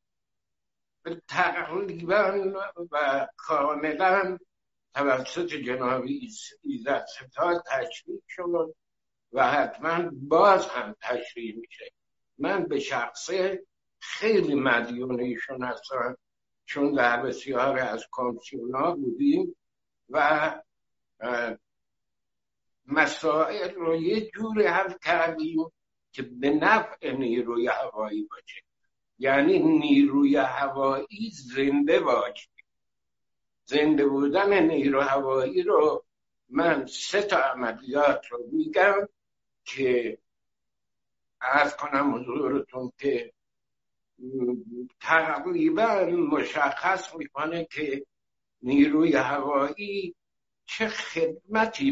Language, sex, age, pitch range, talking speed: Persian, male, 60-79, 135-220 Hz, 80 wpm